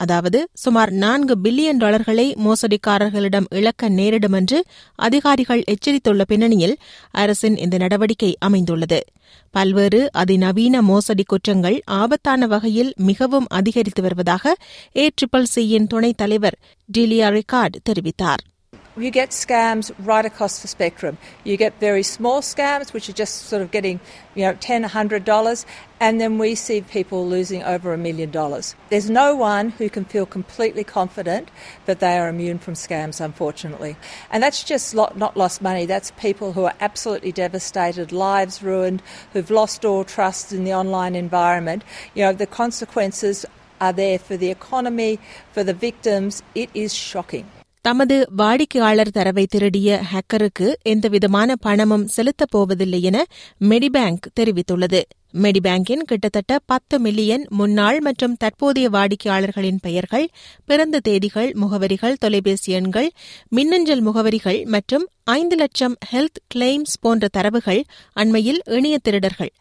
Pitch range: 190-235 Hz